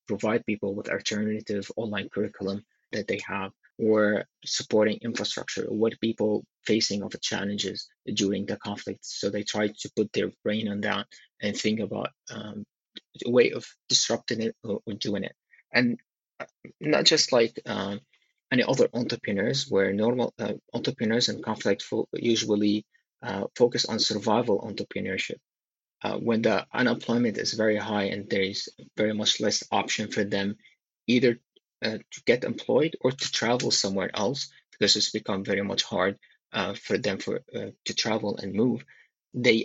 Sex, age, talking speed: male, 20-39, 160 wpm